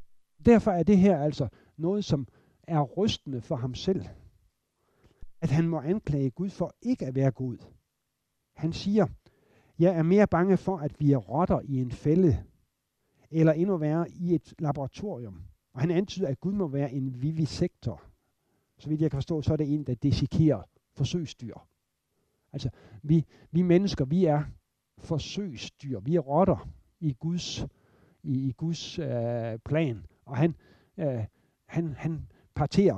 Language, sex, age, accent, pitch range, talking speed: Danish, male, 60-79, native, 130-180 Hz, 155 wpm